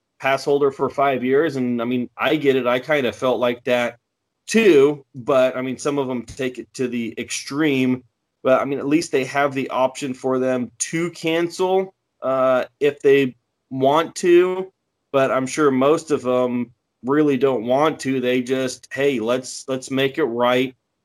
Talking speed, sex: 185 wpm, male